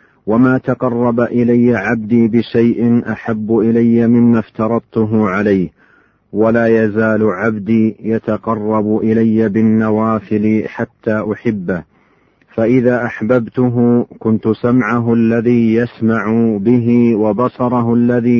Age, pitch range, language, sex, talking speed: 40-59, 110-120 Hz, Arabic, male, 90 wpm